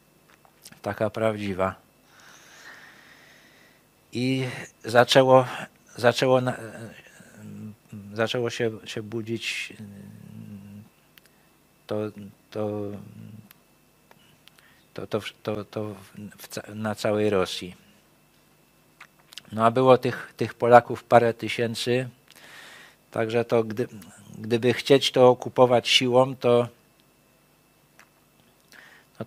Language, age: Polish, 50-69